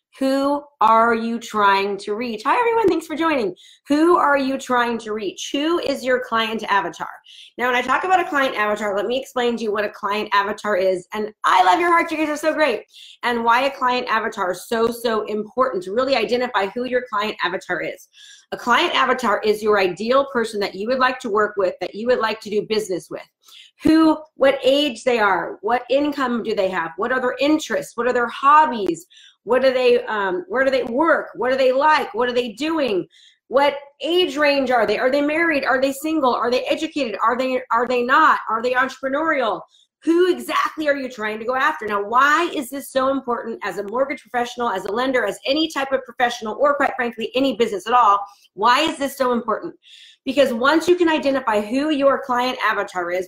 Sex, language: female, English